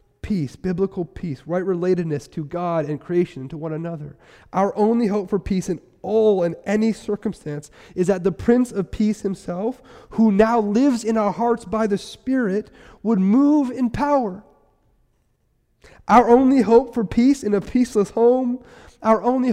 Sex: male